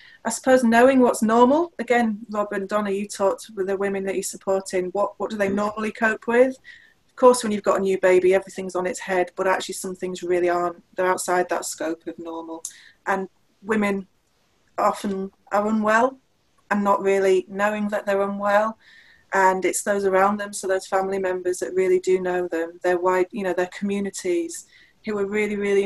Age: 30-49